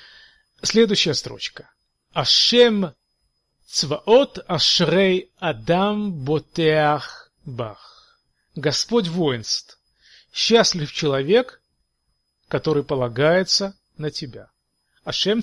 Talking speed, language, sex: 60 wpm, Russian, male